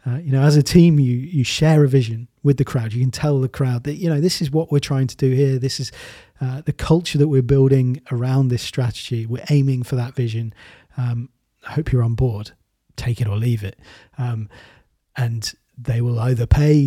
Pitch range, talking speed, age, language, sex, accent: 125-145 Hz, 225 wpm, 30-49, English, male, British